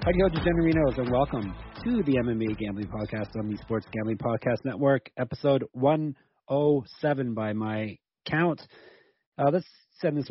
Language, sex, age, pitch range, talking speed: English, male, 30-49, 105-135 Hz, 150 wpm